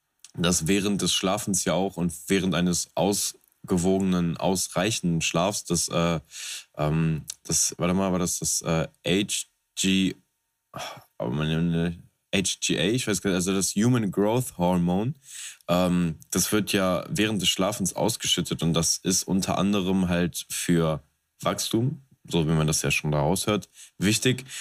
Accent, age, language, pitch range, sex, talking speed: German, 20-39, German, 85-100 Hz, male, 145 wpm